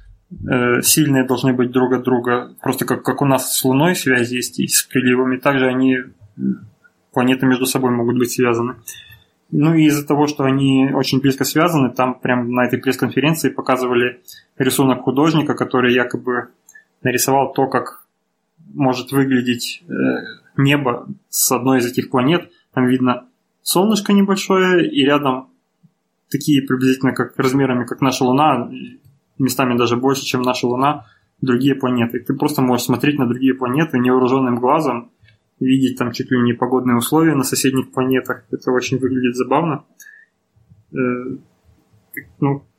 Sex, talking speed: male, 140 wpm